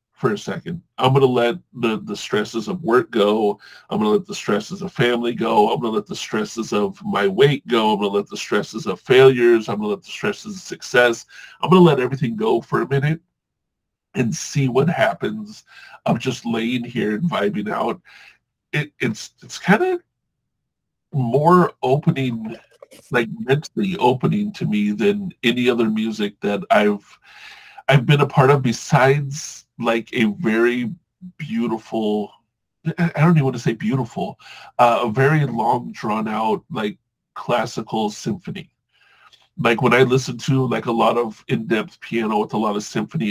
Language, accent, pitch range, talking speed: English, American, 120-200 Hz, 175 wpm